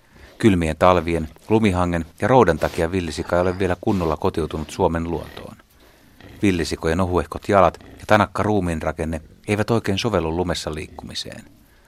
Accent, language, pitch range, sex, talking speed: native, Finnish, 80-105 Hz, male, 125 wpm